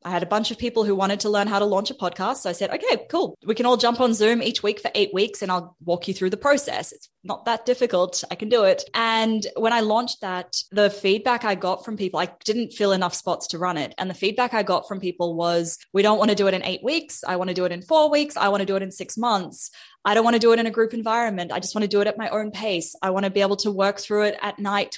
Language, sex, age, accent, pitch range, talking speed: English, female, 20-39, Australian, 185-225 Hz, 310 wpm